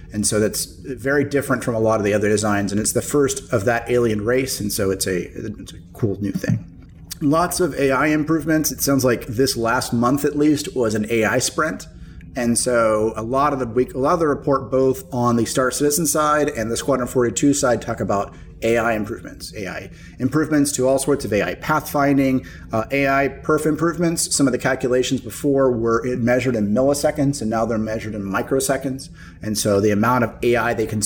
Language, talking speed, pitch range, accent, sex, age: English, 195 wpm, 110-135 Hz, American, male, 30-49